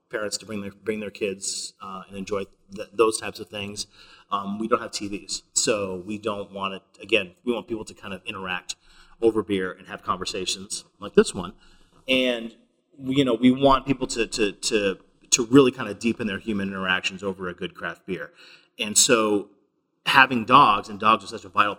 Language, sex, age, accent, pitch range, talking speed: English, male, 30-49, American, 95-110 Hz, 205 wpm